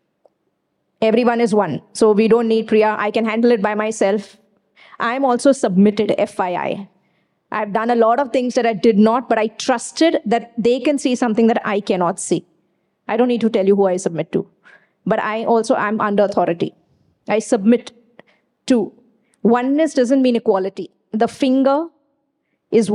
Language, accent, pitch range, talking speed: English, Indian, 215-255 Hz, 175 wpm